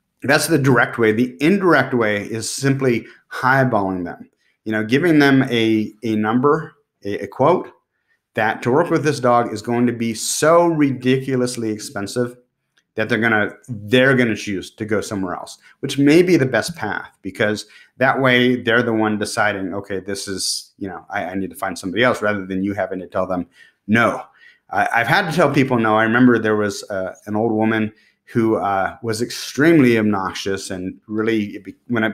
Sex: male